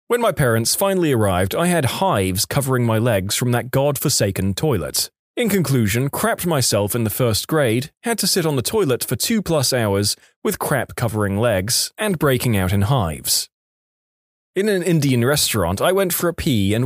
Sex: male